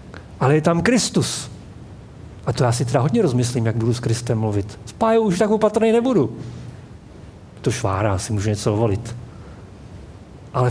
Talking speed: 165 wpm